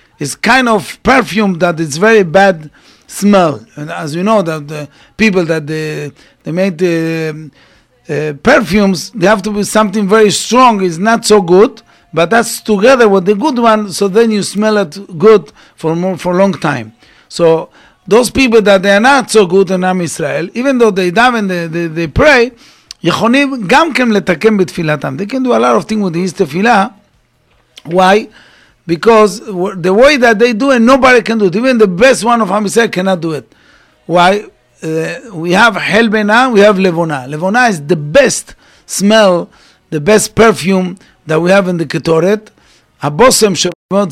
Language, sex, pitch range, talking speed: English, male, 165-220 Hz, 175 wpm